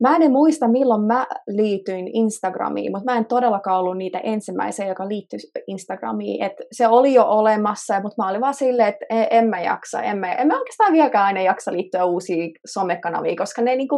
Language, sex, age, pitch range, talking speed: Finnish, female, 20-39, 185-245 Hz, 195 wpm